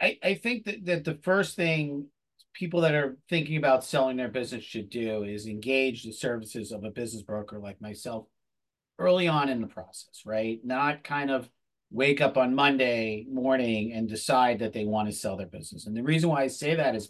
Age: 40-59